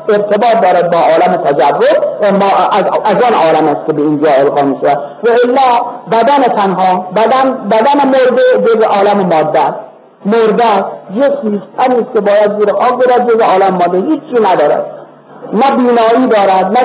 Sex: female